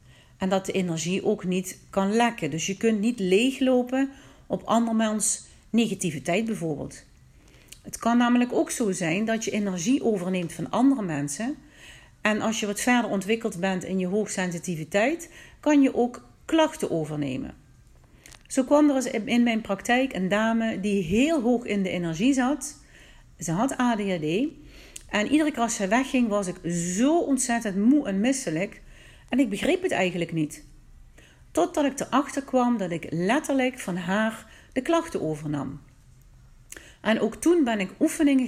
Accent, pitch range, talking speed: Dutch, 185-260 Hz, 155 wpm